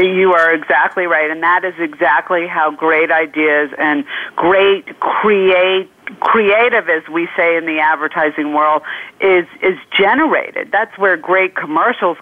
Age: 50-69